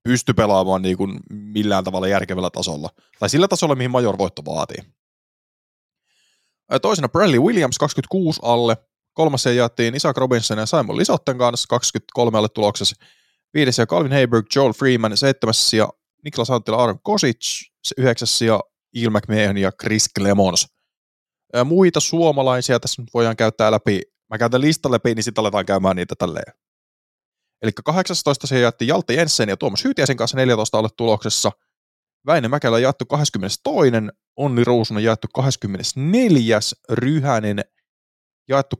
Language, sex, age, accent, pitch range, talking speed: Finnish, male, 20-39, native, 105-135 Hz, 130 wpm